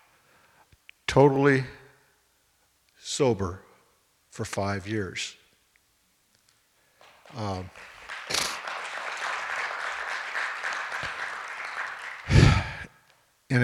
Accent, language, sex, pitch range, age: American, English, male, 100-120 Hz, 60-79